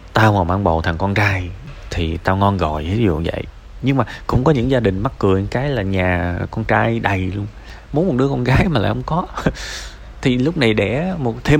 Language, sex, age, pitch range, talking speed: Vietnamese, male, 20-39, 90-120 Hz, 240 wpm